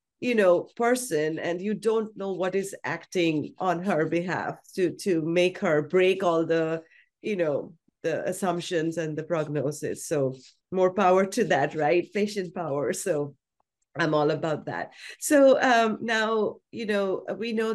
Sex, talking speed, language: female, 160 wpm, English